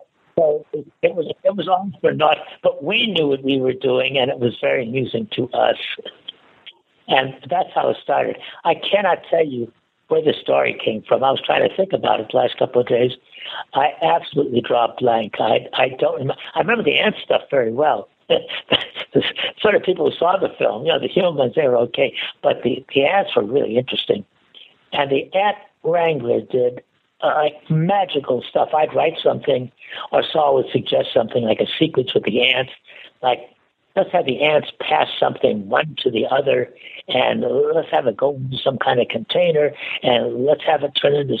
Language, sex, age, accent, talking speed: English, male, 60-79, American, 190 wpm